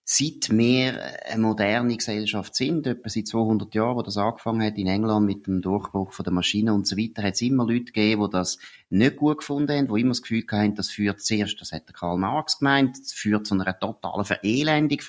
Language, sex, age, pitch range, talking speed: German, male, 30-49, 105-145 Hz, 215 wpm